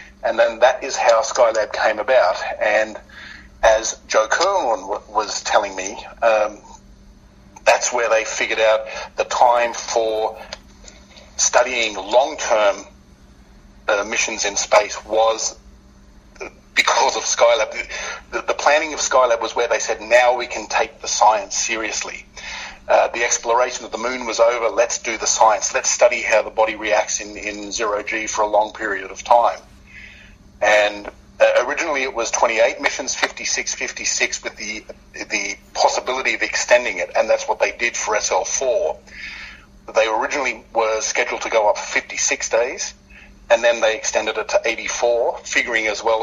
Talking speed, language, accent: 155 wpm, English, Australian